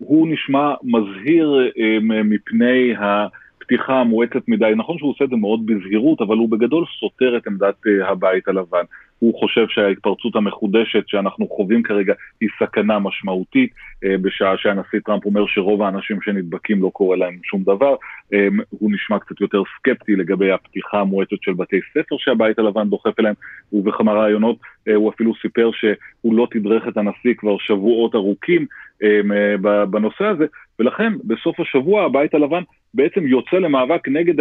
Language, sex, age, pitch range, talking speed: Hebrew, male, 30-49, 105-135 Hz, 145 wpm